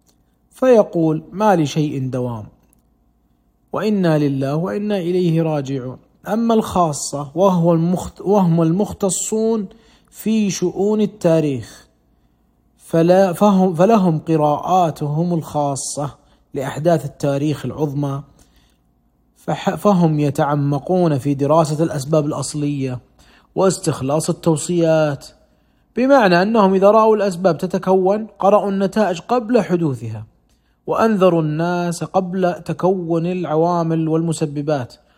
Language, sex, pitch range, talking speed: Arabic, male, 150-195 Hz, 80 wpm